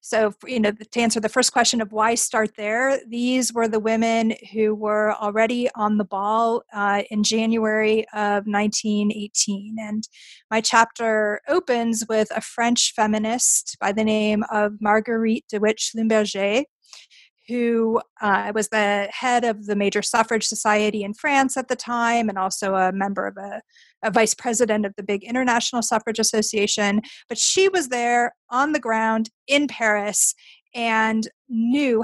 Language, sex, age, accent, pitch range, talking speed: English, female, 30-49, American, 215-240 Hz, 155 wpm